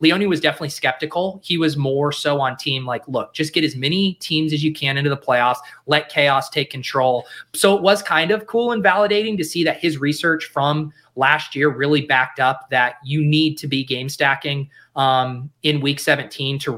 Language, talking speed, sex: English, 205 wpm, male